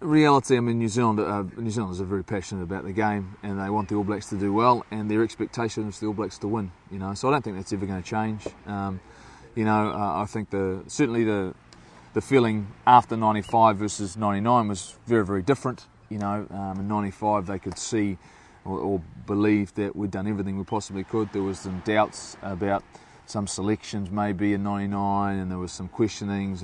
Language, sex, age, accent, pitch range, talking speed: English, male, 30-49, Australian, 100-110 Hz, 215 wpm